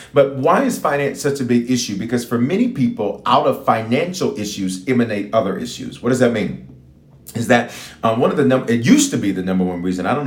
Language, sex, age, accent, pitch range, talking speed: English, male, 40-59, American, 100-135 Hz, 235 wpm